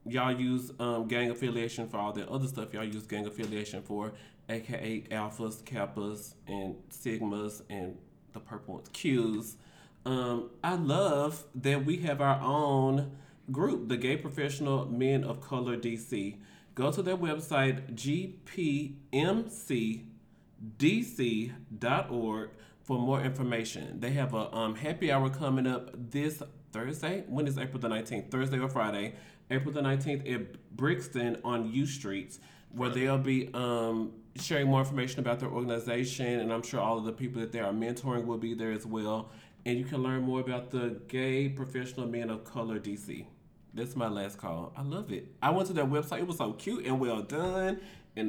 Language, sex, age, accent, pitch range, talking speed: English, male, 30-49, American, 115-145 Hz, 165 wpm